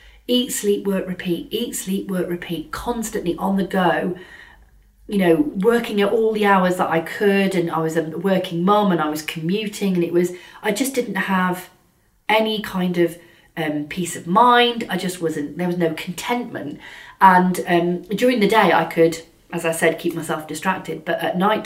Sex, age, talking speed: female, 40-59, 190 wpm